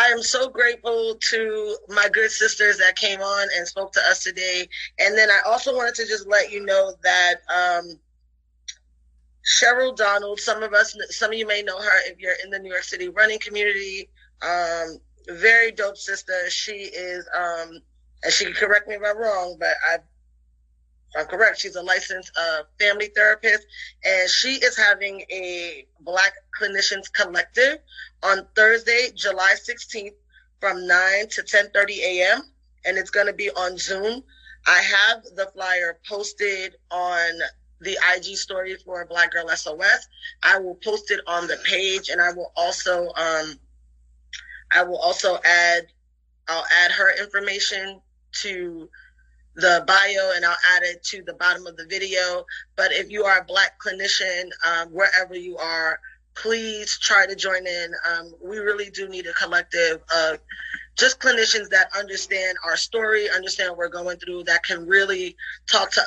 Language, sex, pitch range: English, female, 175-210 Hz